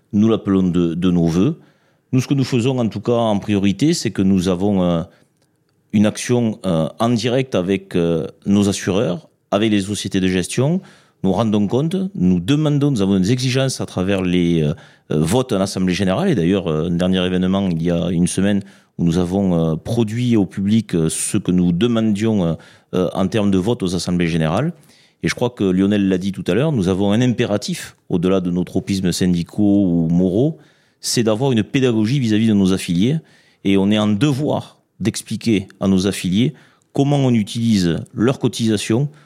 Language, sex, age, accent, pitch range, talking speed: French, male, 40-59, French, 90-120 Hz, 180 wpm